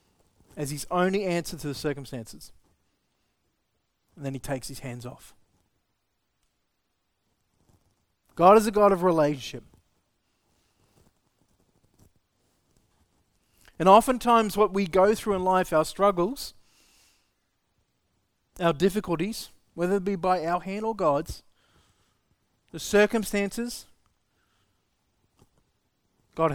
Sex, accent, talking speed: male, Australian, 95 wpm